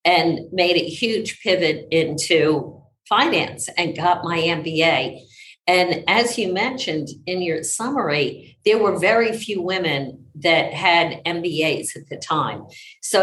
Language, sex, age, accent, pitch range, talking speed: English, female, 50-69, American, 165-230 Hz, 135 wpm